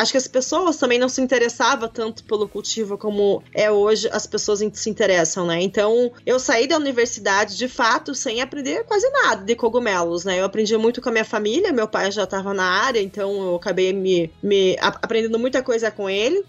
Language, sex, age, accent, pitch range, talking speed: Portuguese, female, 20-39, Brazilian, 215-285 Hz, 205 wpm